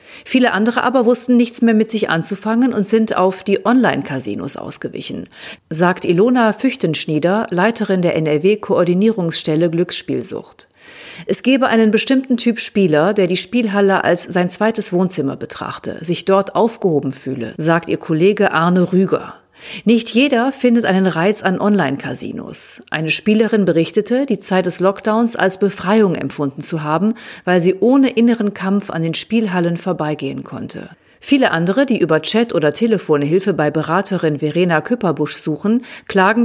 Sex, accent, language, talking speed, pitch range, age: female, German, German, 145 wpm, 165-225 Hz, 40-59